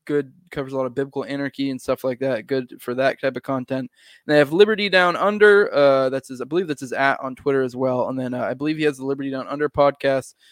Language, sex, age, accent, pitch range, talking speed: English, male, 20-39, American, 130-150 Hz, 270 wpm